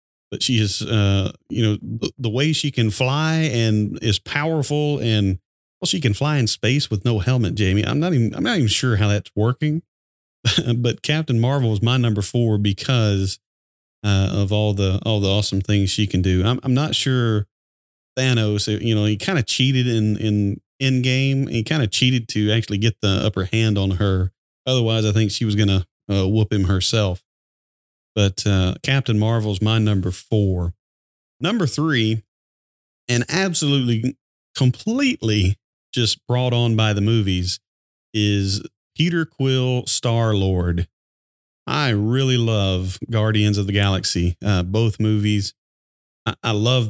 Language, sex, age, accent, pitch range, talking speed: English, male, 40-59, American, 100-125 Hz, 160 wpm